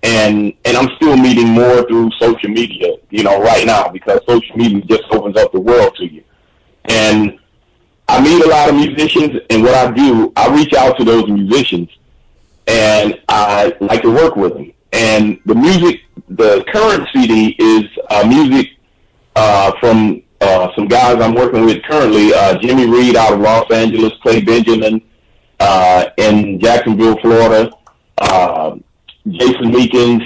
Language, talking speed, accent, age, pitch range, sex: English, 160 wpm, American, 40-59, 105-125 Hz, male